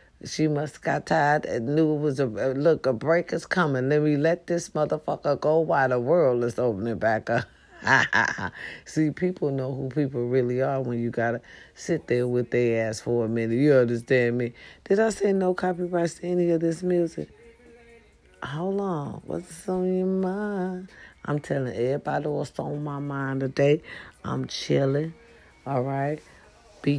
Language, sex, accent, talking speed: English, female, American, 180 wpm